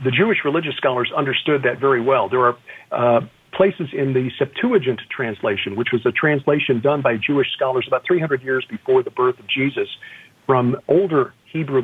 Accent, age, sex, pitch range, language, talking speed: American, 50-69, male, 125-180 Hz, English, 175 wpm